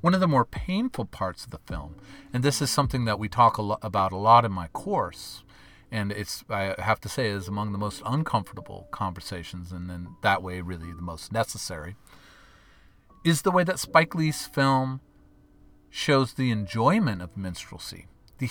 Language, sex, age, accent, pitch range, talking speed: English, male, 40-59, American, 95-130 Hz, 180 wpm